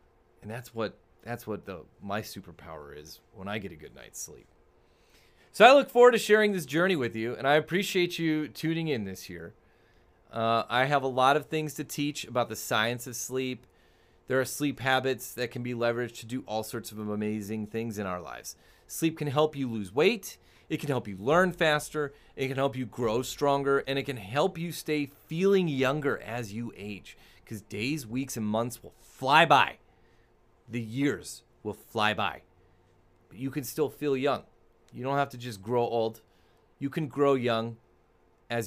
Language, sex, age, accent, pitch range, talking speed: English, male, 30-49, American, 110-145 Hz, 195 wpm